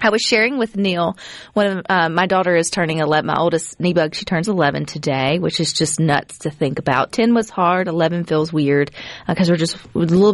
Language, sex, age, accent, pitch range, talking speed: English, female, 30-49, American, 160-195 Hz, 230 wpm